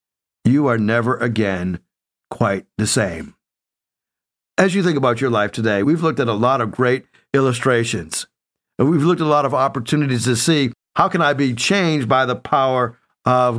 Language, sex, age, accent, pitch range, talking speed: English, male, 50-69, American, 125-160 Hz, 180 wpm